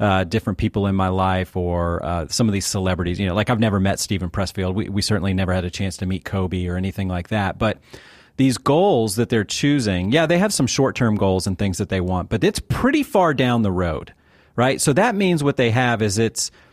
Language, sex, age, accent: English, male, 40-59, American